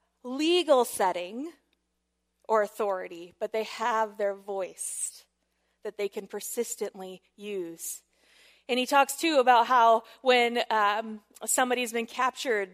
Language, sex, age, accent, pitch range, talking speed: English, female, 20-39, American, 200-255 Hz, 120 wpm